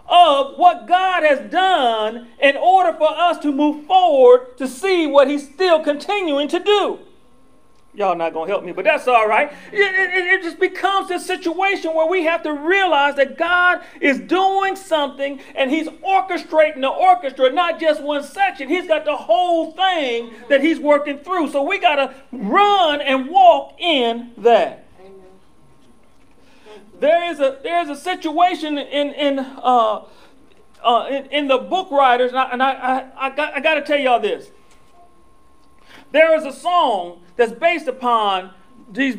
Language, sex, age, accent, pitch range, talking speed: English, male, 40-59, American, 260-350 Hz, 170 wpm